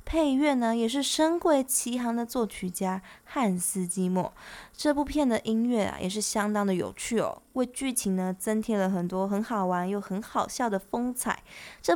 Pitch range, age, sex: 195-265 Hz, 20-39, female